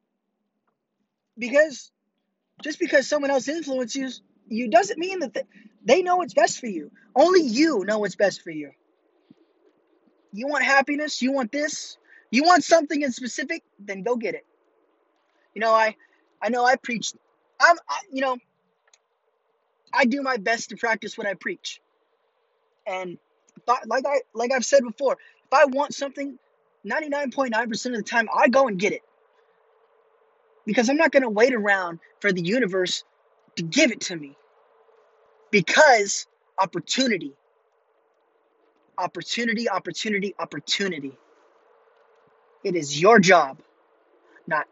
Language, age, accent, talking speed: English, 20-39, American, 140 wpm